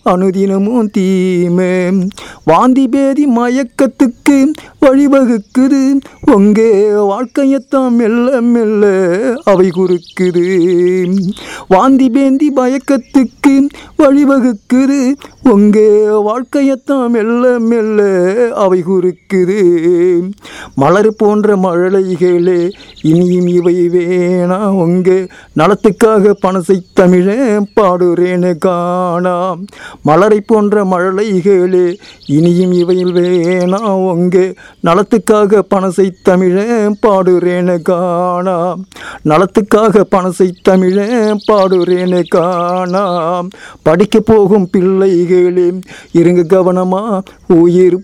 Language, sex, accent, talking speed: Tamil, male, native, 65 wpm